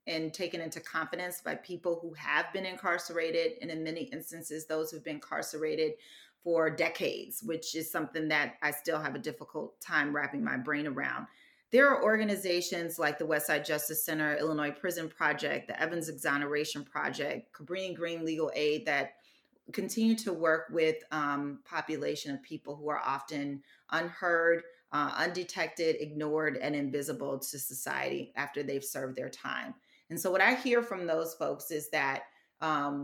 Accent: American